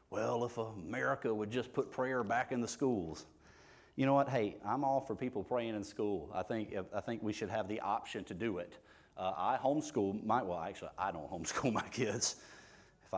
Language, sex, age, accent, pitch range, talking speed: English, male, 30-49, American, 110-140 Hz, 210 wpm